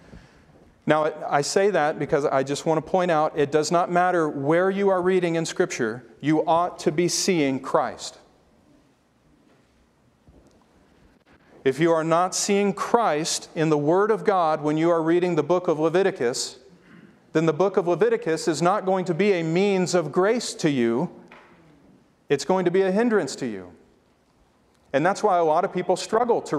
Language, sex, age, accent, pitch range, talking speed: English, male, 40-59, American, 150-190 Hz, 180 wpm